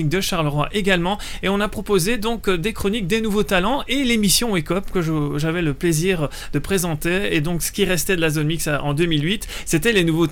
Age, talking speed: 30-49, 215 wpm